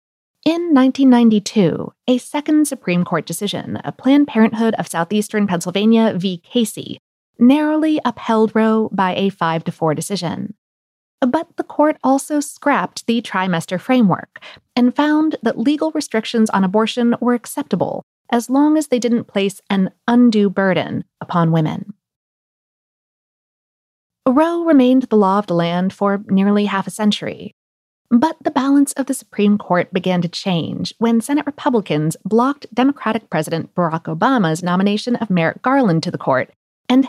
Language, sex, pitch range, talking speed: English, female, 180-260 Hz, 140 wpm